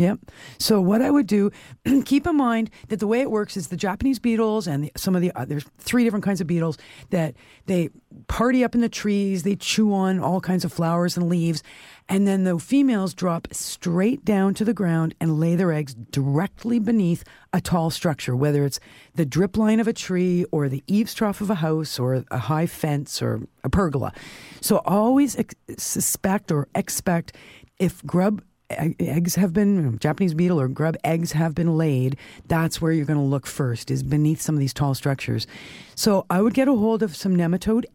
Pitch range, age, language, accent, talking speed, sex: 155-205 Hz, 50-69, English, American, 200 wpm, female